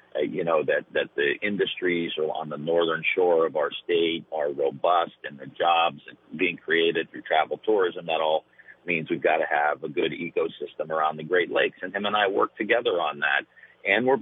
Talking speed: 205 wpm